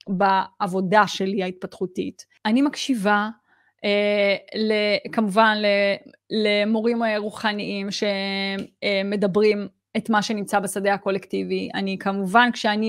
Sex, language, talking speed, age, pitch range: female, Hebrew, 85 wpm, 20-39, 195-215 Hz